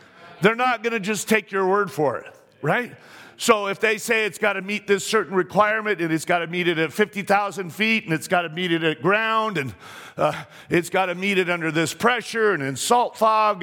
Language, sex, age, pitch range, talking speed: English, male, 50-69, 180-220 Hz, 235 wpm